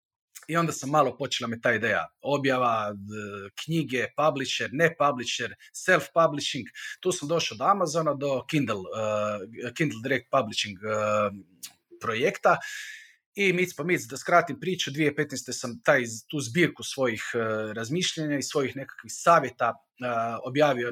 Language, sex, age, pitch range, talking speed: Croatian, male, 40-59, 120-165 Hz, 145 wpm